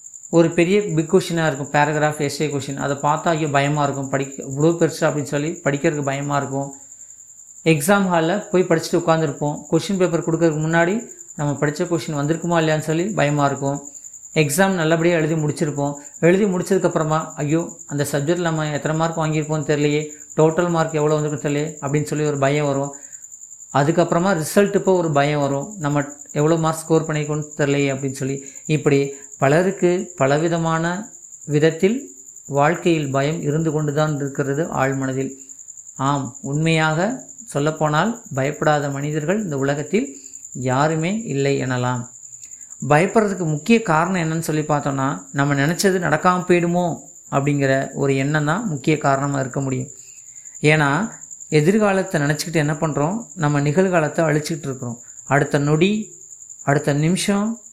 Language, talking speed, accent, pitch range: Tamil, 130 wpm, native, 140-165 Hz